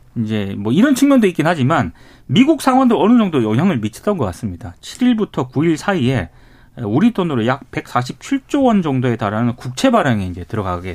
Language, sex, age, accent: Korean, male, 40-59, native